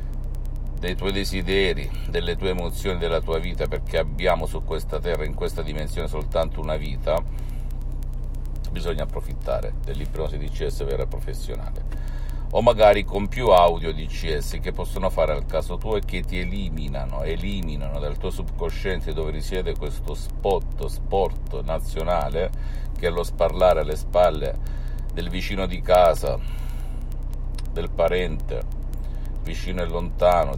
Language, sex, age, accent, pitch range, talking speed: Italian, male, 50-69, native, 65-85 Hz, 135 wpm